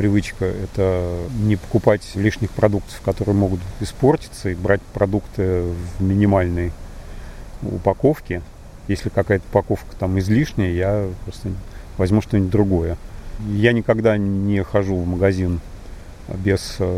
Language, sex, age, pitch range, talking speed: Russian, male, 40-59, 95-105 Hz, 115 wpm